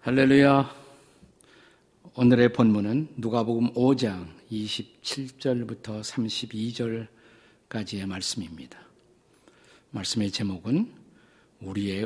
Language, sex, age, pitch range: Korean, male, 50-69, 110-130 Hz